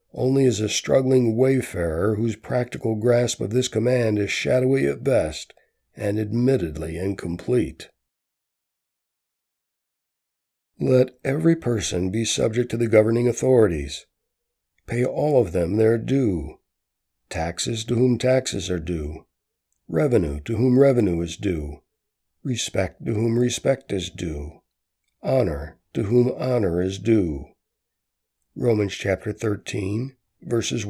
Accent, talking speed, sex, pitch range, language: American, 120 wpm, male, 100-125 Hz, English